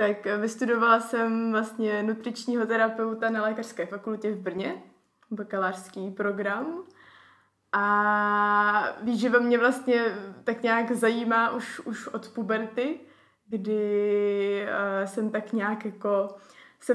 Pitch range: 205-240 Hz